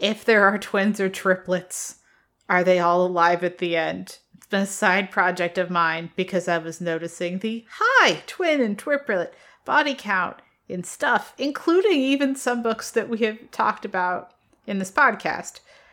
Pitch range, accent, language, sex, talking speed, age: 175-230 Hz, American, English, female, 170 wpm, 30-49